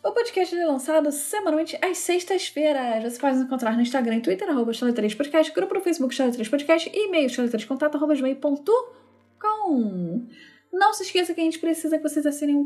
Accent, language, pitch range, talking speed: Brazilian, Portuguese, 250-315 Hz, 165 wpm